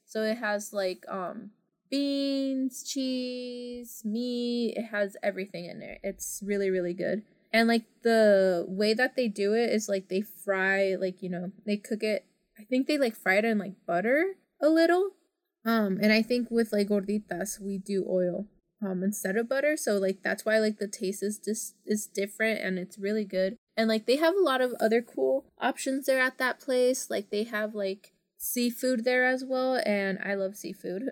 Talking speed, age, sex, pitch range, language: 195 wpm, 20-39, female, 195-245 Hz, English